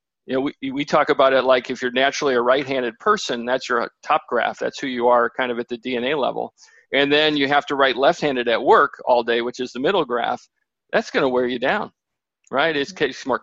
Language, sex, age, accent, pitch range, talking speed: English, male, 40-59, American, 125-145 Hz, 235 wpm